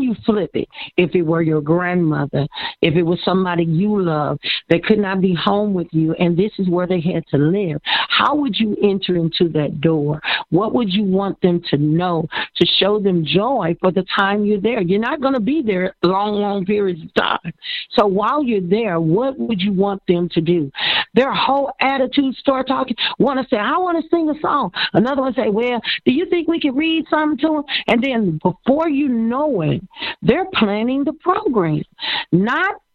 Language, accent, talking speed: English, American, 205 wpm